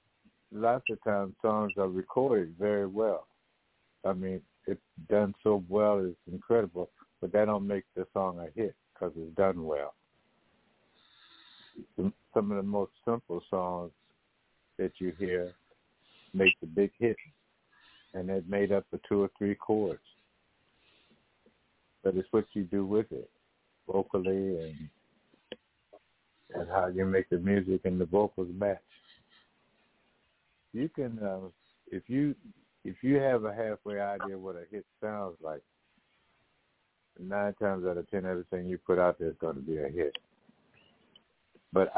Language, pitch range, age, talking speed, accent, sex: English, 90-105 Hz, 60-79, 145 wpm, American, male